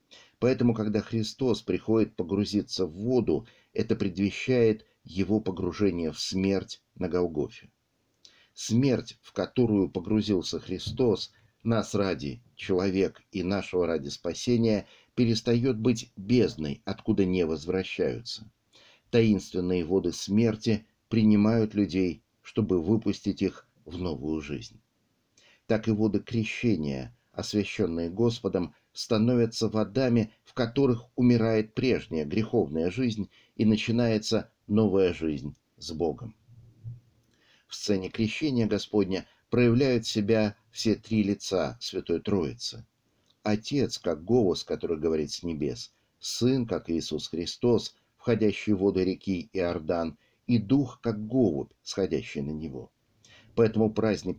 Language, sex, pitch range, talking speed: Russian, male, 95-115 Hz, 110 wpm